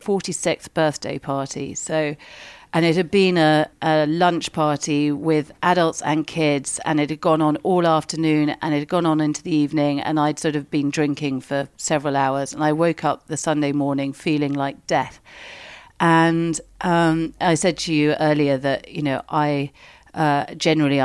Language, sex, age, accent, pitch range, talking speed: English, female, 40-59, British, 140-160 Hz, 180 wpm